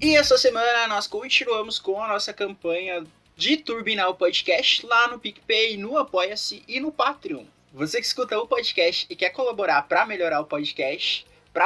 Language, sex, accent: Portuguese, male, Brazilian